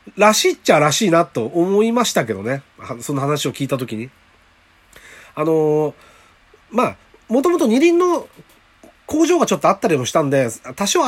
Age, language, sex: 30-49, Japanese, male